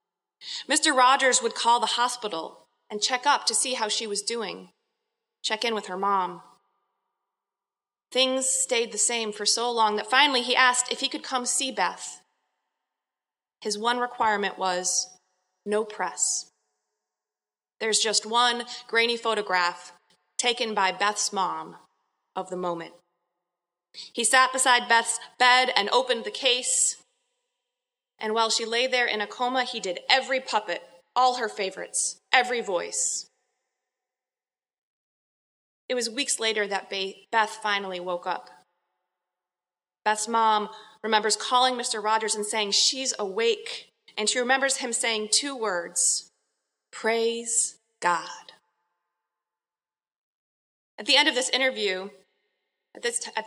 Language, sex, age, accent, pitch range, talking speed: English, female, 30-49, American, 185-250 Hz, 130 wpm